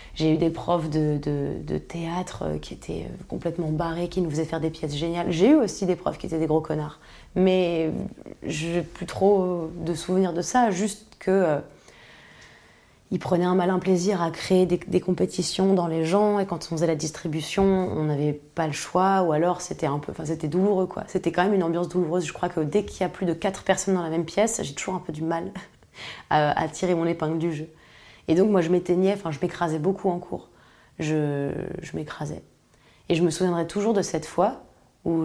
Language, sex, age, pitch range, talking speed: French, female, 20-39, 160-185 Hz, 220 wpm